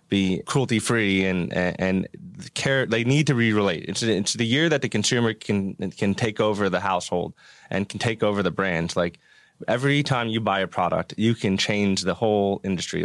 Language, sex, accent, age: English, male, American, 20-39